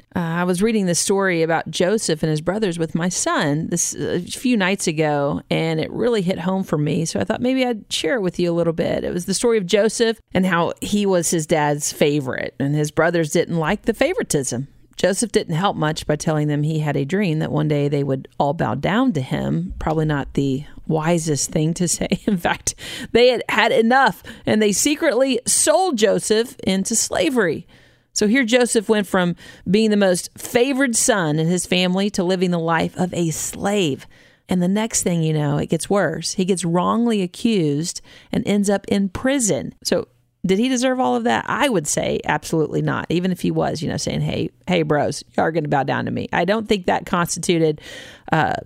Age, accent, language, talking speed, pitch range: 40-59, American, English, 215 wpm, 160-220 Hz